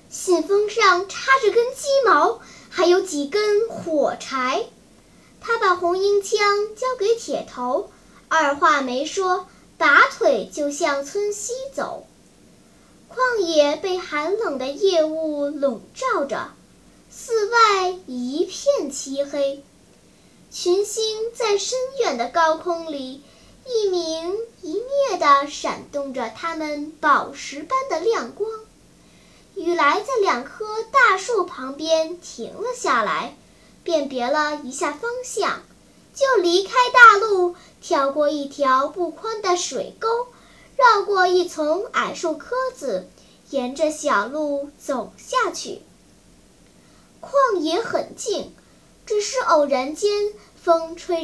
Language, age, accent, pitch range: Chinese, 10-29, native, 295-425 Hz